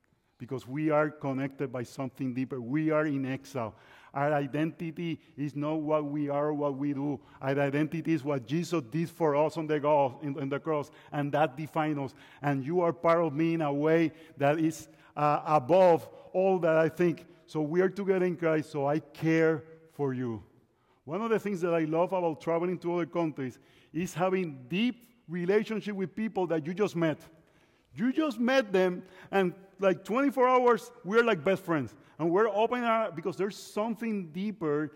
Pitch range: 145-185 Hz